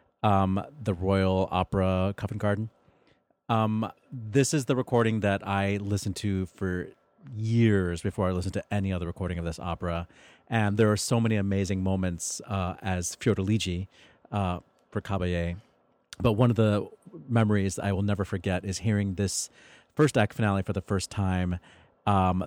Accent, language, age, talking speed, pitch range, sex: American, English, 30-49, 160 wpm, 90-110 Hz, male